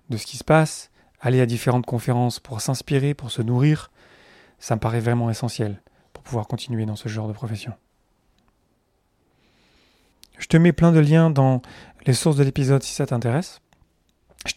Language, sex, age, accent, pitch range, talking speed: French, male, 30-49, French, 125-155 Hz, 175 wpm